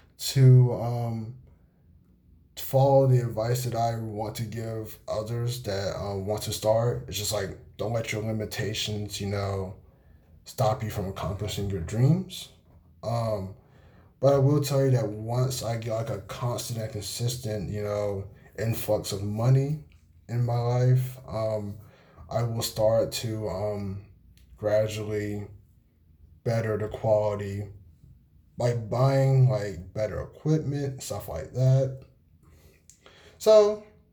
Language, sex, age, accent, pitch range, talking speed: English, male, 20-39, American, 100-130 Hz, 130 wpm